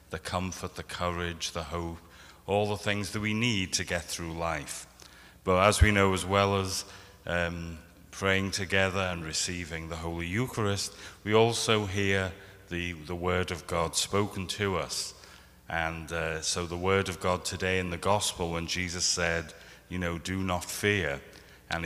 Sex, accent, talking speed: male, British, 170 wpm